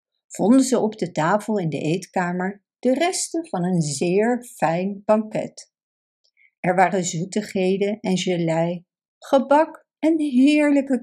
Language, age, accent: Dutch, 60-79, Dutch